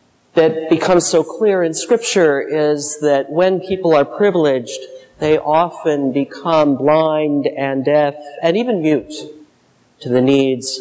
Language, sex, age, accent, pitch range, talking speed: English, male, 40-59, American, 140-180 Hz, 135 wpm